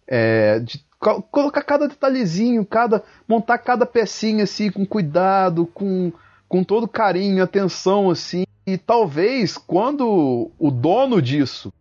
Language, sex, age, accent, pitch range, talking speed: Portuguese, male, 30-49, Brazilian, 130-190 Hz, 125 wpm